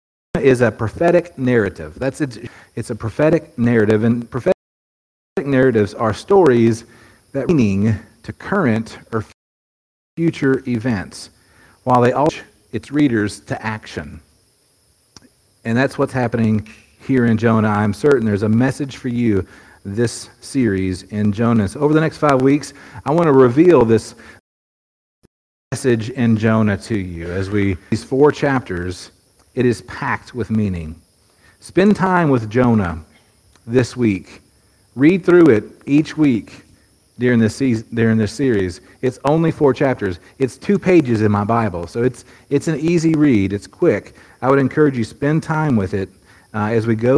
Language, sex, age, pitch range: English, male, 40-59, 105-135 Hz